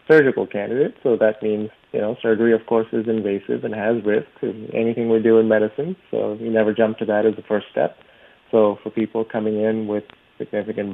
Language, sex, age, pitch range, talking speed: English, male, 30-49, 105-115 Hz, 210 wpm